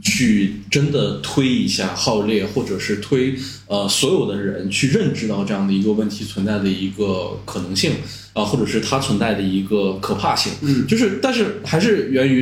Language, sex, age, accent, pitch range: Chinese, male, 20-39, native, 105-155 Hz